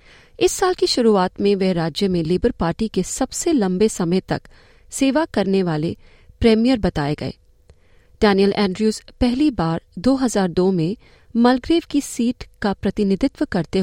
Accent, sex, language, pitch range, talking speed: native, female, Hindi, 185-250 Hz, 145 wpm